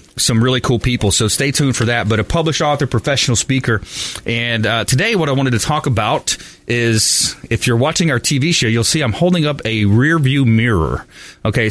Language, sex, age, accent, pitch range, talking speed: English, male, 30-49, American, 115-145 Hz, 210 wpm